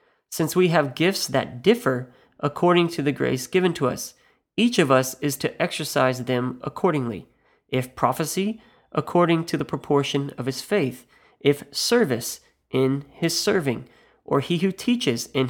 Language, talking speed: English, 155 wpm